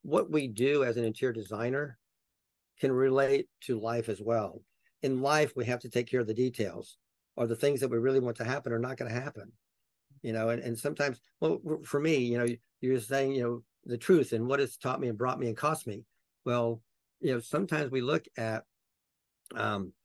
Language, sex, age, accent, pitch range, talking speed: English, male, 50-69, American, 110-130 Hz, 215 wpm